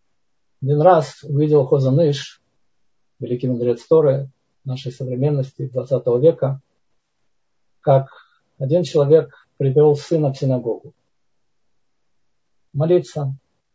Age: 40-59